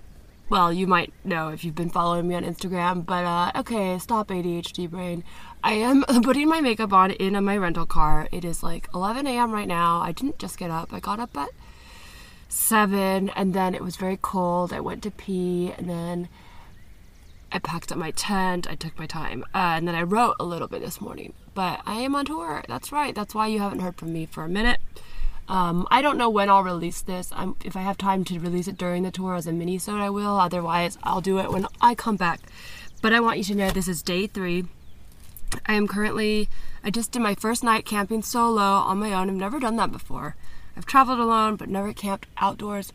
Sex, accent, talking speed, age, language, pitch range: female, American, 225 wpm, 20-39, English, 175-210 Hz